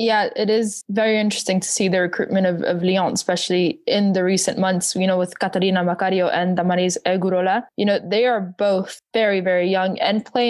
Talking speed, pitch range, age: 200 wpm, 180-205 Hz, 20-39